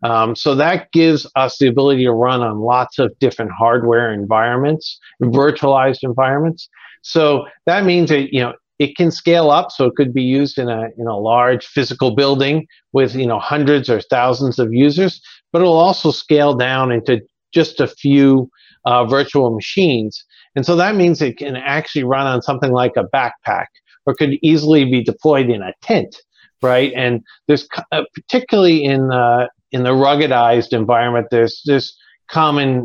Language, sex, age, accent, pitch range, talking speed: English, male, 50-69, American, 120-155 Hz, 170 wpm